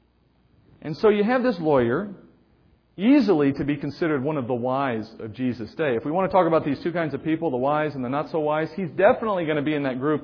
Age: 40-59